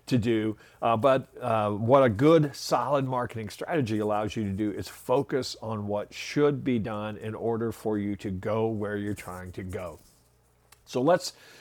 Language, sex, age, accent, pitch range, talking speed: English, male, 50-69, American, 110-135 Hz, 180 wpm